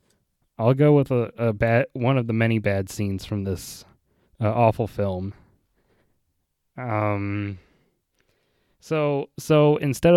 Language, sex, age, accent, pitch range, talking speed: English, male, 20-39, American, 100-130 Hz, 125 wpm